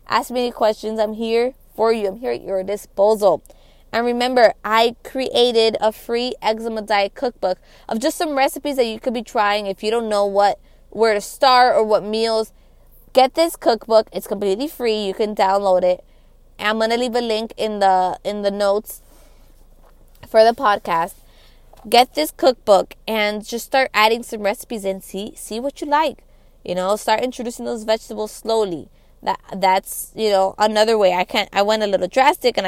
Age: 20-39